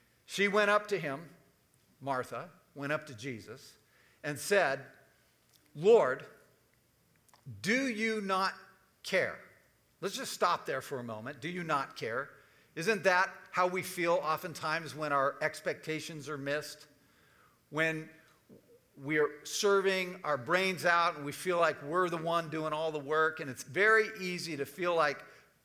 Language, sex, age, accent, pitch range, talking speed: English, male, 50-69, American, 145-185 Hz, 150 wpm